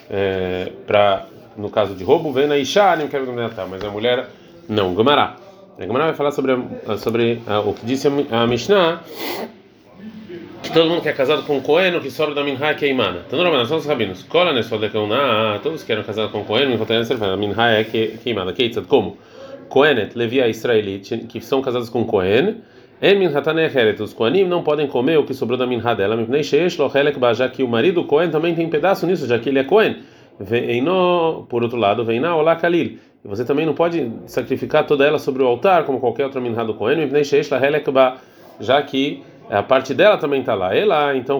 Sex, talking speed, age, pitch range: male, 145 wpm, 30-49, 110-150 Hz